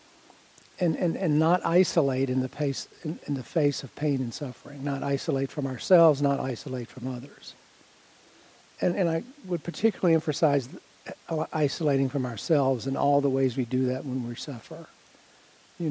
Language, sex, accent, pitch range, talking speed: English, male, American, 135-160 Hz, 165 wpm